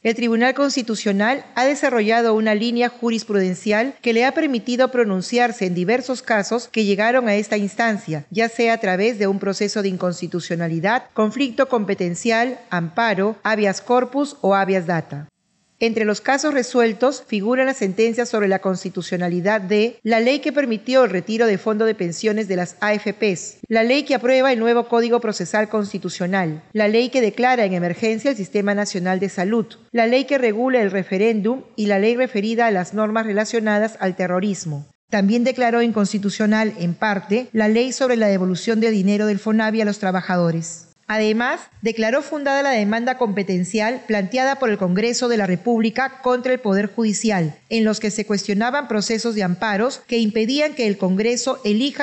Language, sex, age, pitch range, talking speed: Spanish, female, 40-59, 200-245 Hz, 170 wpm